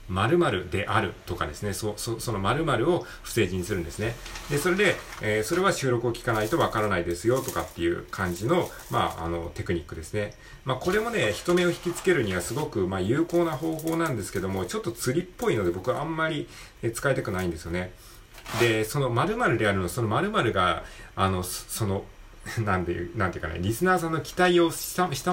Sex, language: male, Japanese